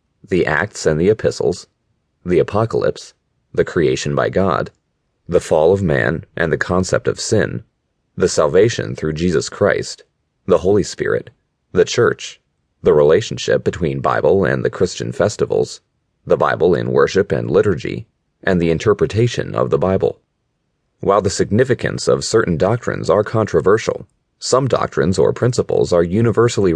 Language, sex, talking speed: English, male, 145 wpm